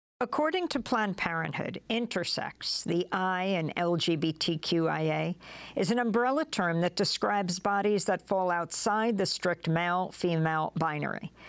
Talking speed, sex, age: 120 wpm, female, 50-69